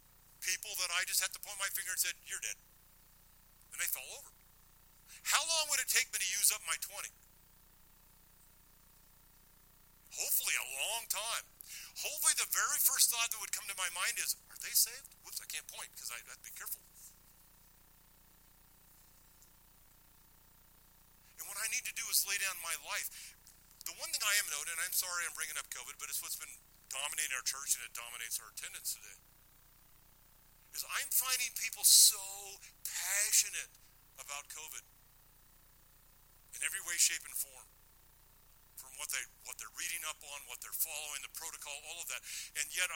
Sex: male